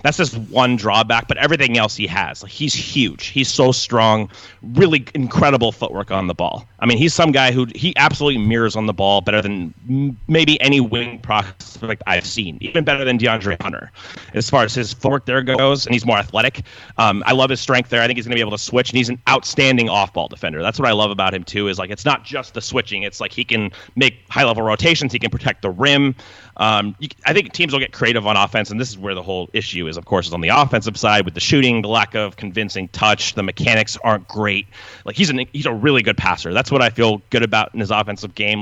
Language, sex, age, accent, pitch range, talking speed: English, male, 30-49, American, 105-135 Hz, 245 wpm